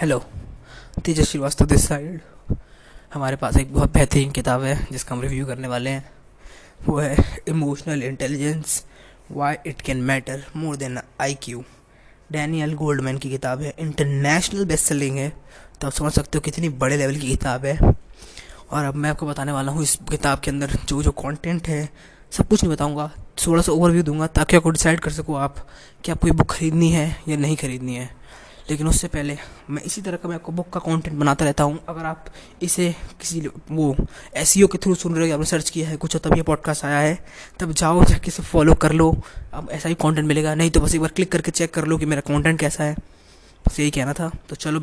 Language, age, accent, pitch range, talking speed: Hindi, 20-39, native, 140-170 Hz, 205 wpm